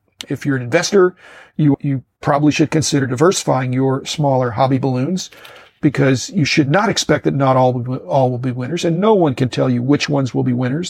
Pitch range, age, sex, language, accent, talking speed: 130-165 Hz, 50-69, male, English, American, 205 wpm